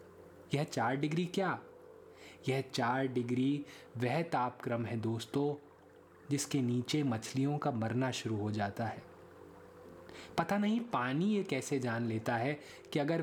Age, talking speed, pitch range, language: 20-39, 135 wpm, 115-150 Hz, Hindi